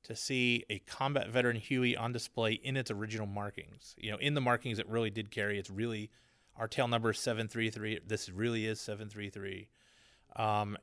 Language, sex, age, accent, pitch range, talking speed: English, male, 30-49, American, 105-120 Hz, 195 wpm